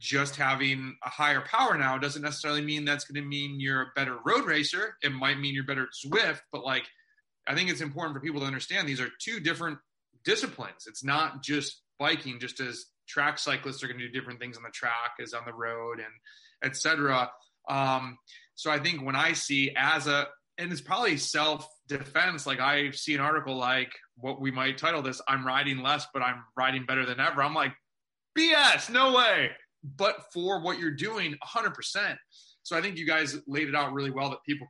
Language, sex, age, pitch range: English, male, 30-49, 130-150 Hz